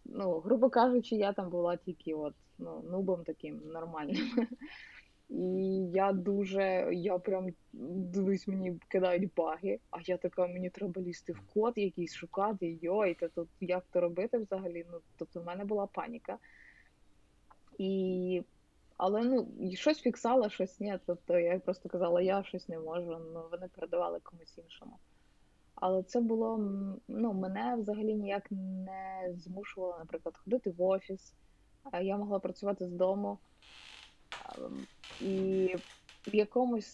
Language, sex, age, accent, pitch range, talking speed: Ukrainian, female, 20-39, native, 180-210 Hz, 140 wpm